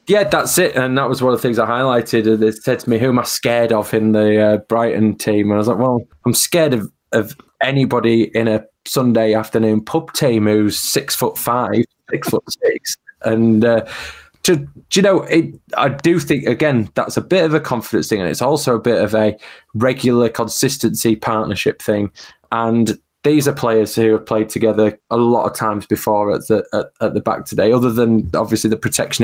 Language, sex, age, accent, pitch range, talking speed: English, male, 20-39, British, 110-130 Hz, 205 wpm